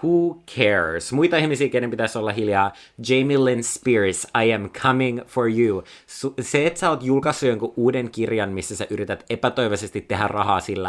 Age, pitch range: 30-49, 100-125 Hz